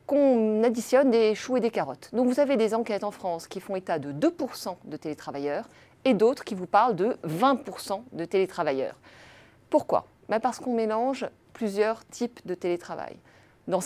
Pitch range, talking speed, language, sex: 165-235 Hz, 170 wpm, French, female